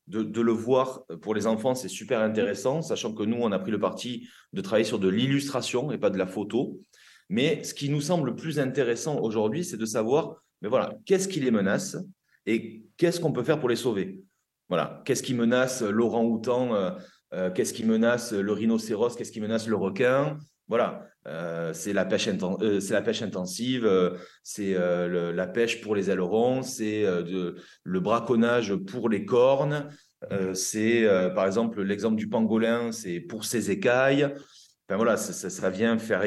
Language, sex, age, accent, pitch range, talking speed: French, male, 30-49, French, 95-125 Hz, 195 wpm